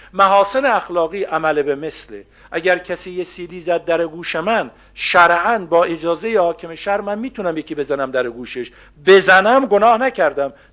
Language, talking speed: Persian, 150 wpm